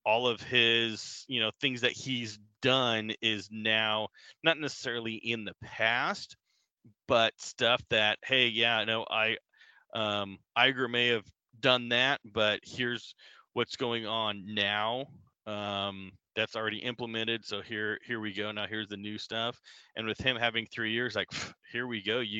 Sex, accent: male, American